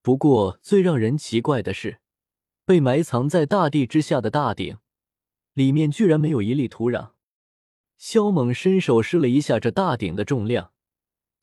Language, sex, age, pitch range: Chinese, male, 20-39, 115-165 Hz